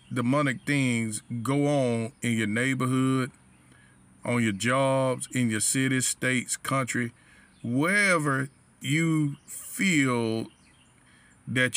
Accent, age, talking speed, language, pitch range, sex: American, 40-59, 95 wpm, English, 115-140 Hz, male